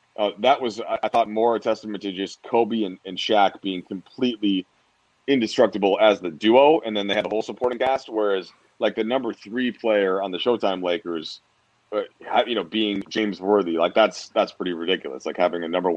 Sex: male